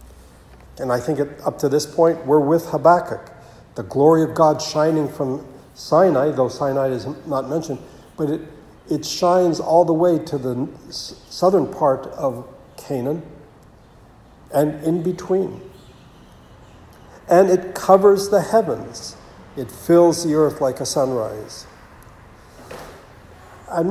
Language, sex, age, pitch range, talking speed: English, male, 60-79, 130-165 Hz, 130 wpm